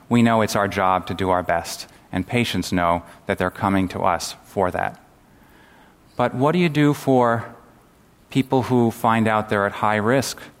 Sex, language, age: male, English, 30-49